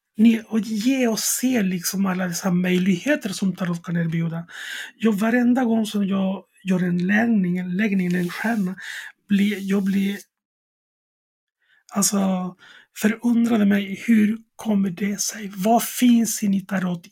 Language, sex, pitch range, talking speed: Swedish, male, 180-215 Hz, 130 wpm